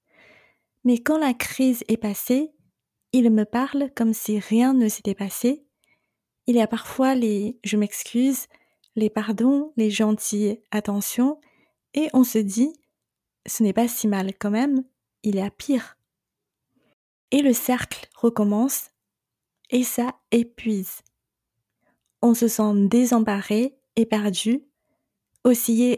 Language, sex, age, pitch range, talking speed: French, female, 20-39, 210-250 Hz, 145 wpm